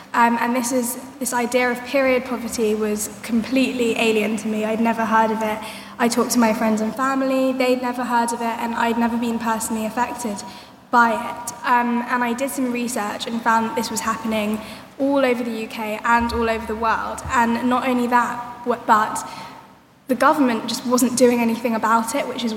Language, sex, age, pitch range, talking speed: English, female, 10-29, 225-245 Hz, 200 wpm